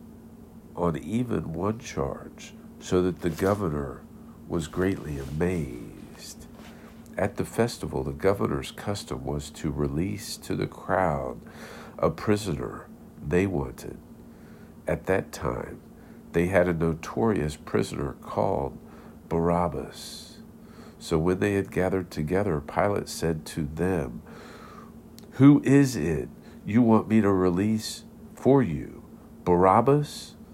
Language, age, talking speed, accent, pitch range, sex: English, 50-69, 115 wpm, American, 75-105 Hz, male